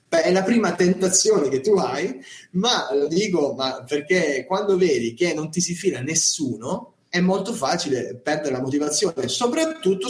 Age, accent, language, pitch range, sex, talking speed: 20-39, native, Italian, 125-185 Hz, male, 155 wpm